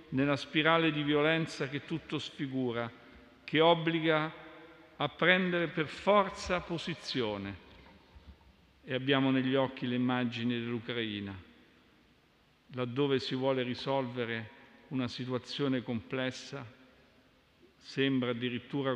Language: Italian